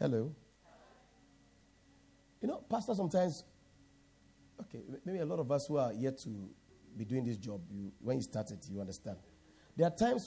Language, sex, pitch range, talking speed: English, male, 120-170 Hz, 165 wpm